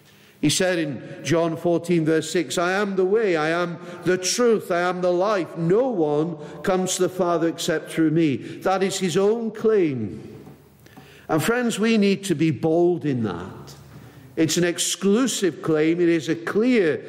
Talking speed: 175 wpm